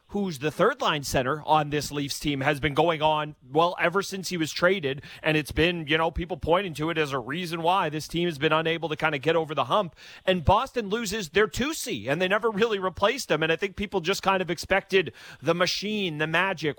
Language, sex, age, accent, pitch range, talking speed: English, male, 30-49, American, 145-180 Hz, 235 wpm